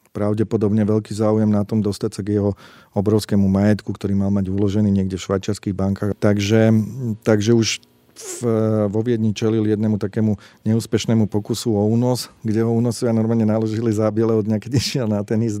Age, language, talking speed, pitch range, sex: 40-59, Slovak, 175 wpm, 100-115 Hz, male